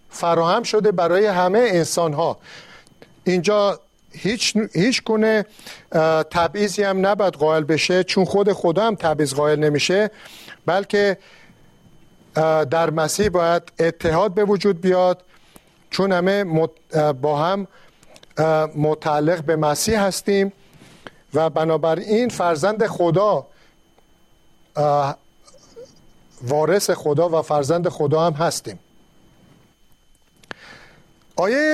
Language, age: Persian, 50-69